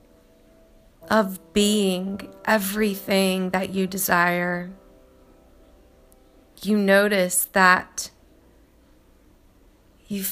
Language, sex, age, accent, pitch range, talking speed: English, female, 20-39, American, 175-205 Hz, 60 wpm